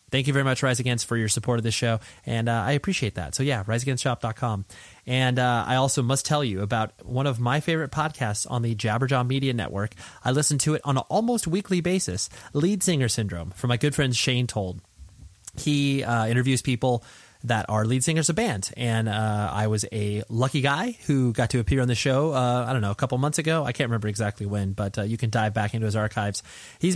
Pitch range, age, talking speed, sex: 110-140 Hz, 30-49, 230 wpm, male